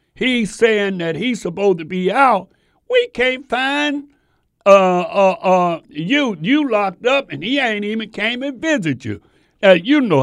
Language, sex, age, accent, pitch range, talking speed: English, male, 60-79, American, 135-215 Hz, 170 wpm